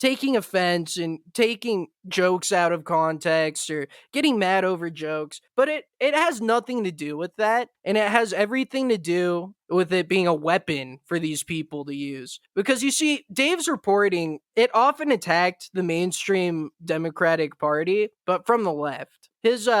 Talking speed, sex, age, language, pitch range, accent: 165 wpm, male, 20-39, English, 165-230 Hz, American